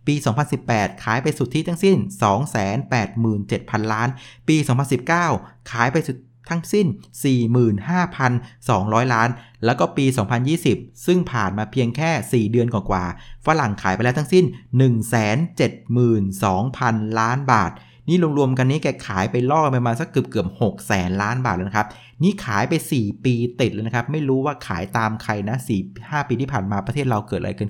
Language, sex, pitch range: Thai, male, 100-135 Hz